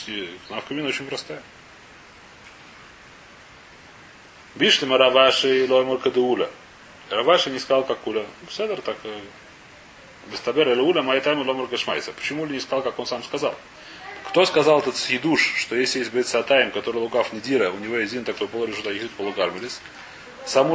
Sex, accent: male, native